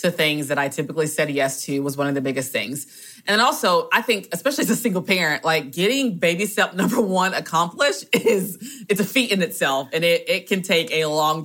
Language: English